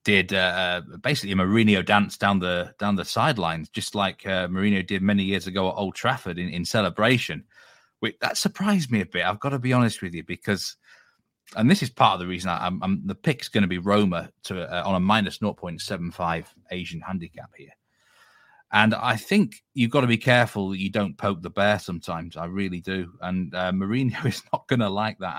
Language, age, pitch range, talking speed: English, 30-49, 90-105 Hz, 215 wpm